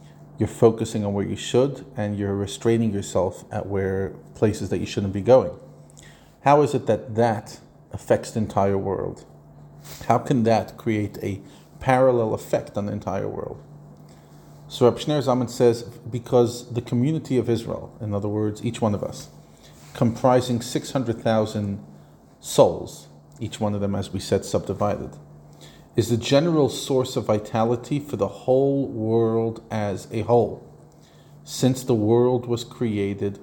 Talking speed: 150 wpm